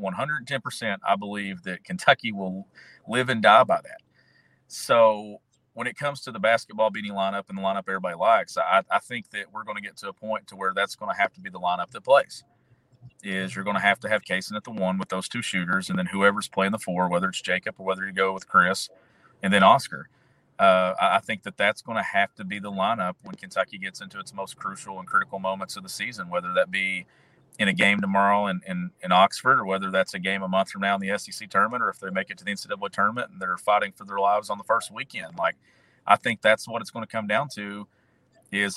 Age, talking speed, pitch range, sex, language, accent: 40-59, 245 wpm, 95-125 Hz, male, English, American